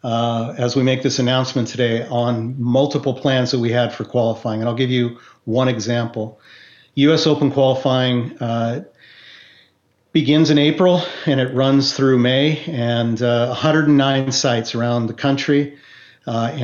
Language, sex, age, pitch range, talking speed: English, male, 50-69, 120-135 Hz, 150 wpm